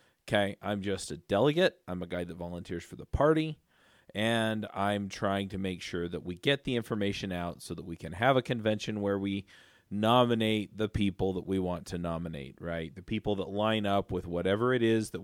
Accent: American